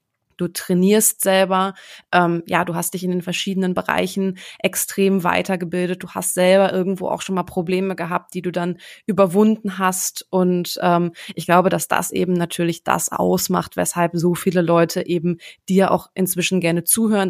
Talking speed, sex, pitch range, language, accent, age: 165 wpm, female, 170-185 Hz, German, German, 20-39